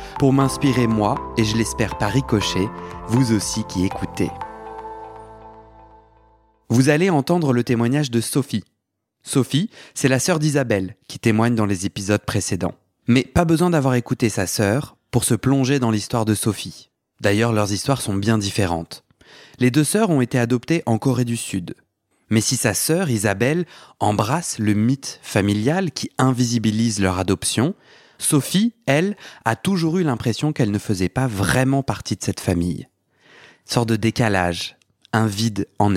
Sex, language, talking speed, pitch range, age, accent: male, French, 155 wpm, 105-135 Hz, 30-49, French